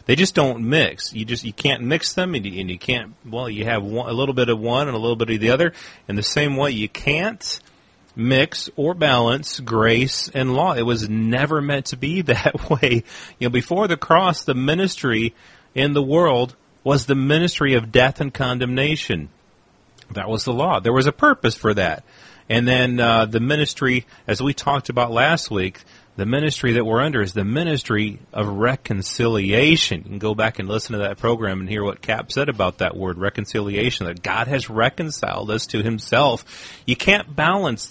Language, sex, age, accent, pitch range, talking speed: English, male, 40-59, American, 110-140 Hz, 200 wpm